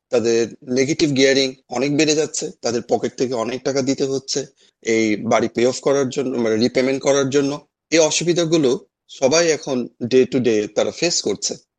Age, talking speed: 30-49, 165 wpm